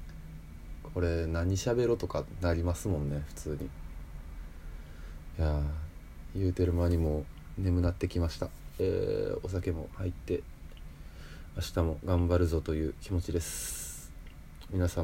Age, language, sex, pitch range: 20-39, Japanese, male, 75-85 Hz